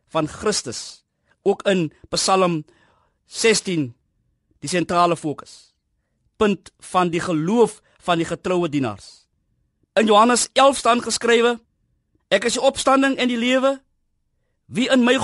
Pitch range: 170-250 Hz